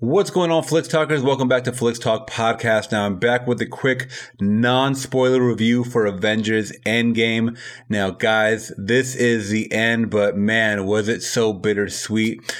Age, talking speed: 30-49, 160 wpm